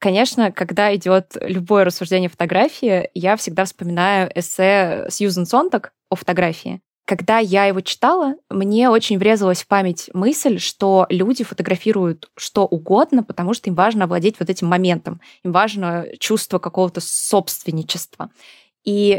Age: 20-39